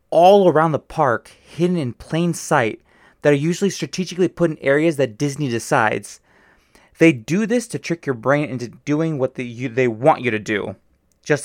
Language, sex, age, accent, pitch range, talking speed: English, male, 20-39, American, 125-165 Hz, 190 wpm